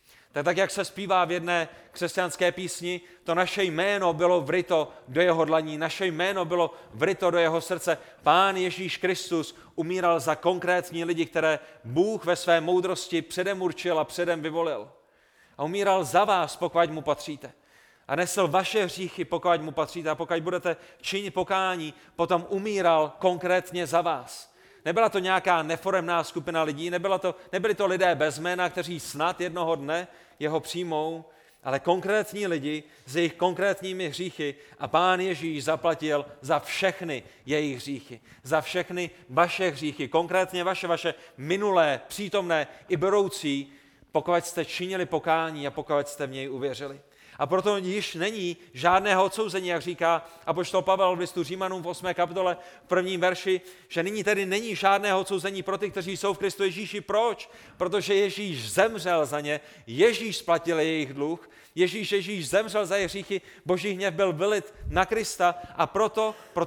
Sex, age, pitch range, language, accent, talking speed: male, 30-49, 160-190 Hz, Czech, native, 160 wpm